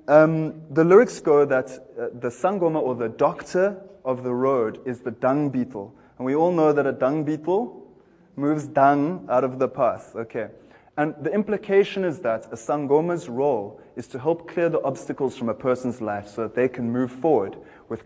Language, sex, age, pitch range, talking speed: English, male, 20-39, 130-160 Hz, 195 wpm